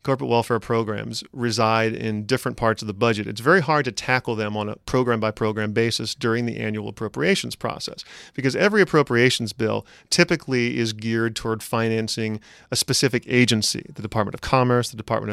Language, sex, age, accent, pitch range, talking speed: English, male, 40-59, American, 110-130 Hz, 170 wpm